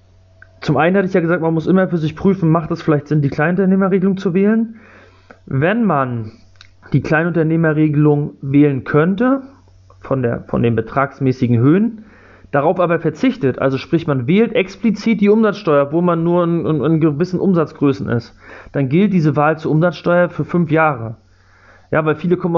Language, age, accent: German, 30-49, German